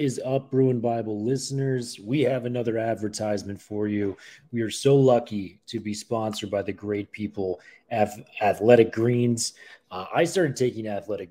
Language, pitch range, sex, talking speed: English, 100-125 Hz, male, 160 wpm